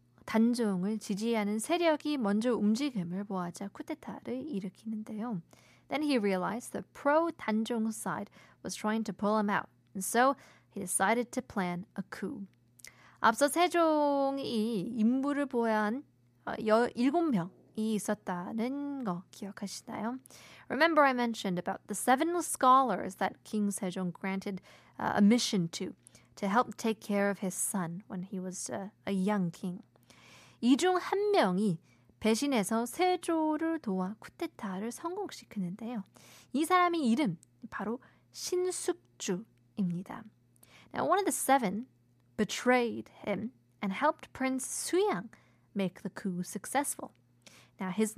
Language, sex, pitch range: Korean, female, 190-270 Hz